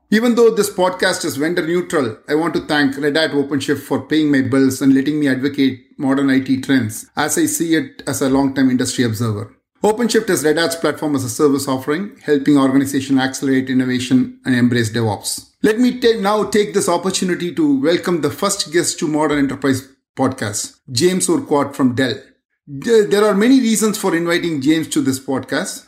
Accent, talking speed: Indian, 185 wpm